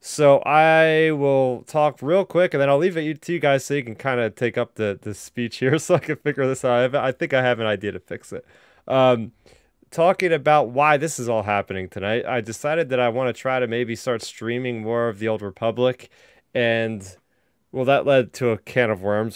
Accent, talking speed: American, 230 wpm